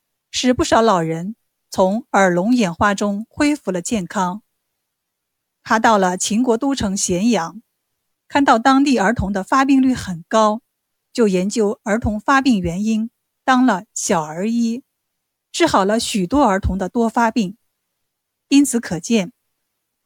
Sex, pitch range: female, 190-255 Hz